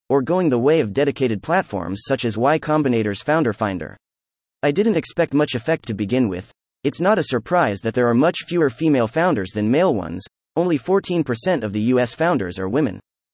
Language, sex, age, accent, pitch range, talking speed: English, male, 30-49, American, 110-155 Hz, 195 wpm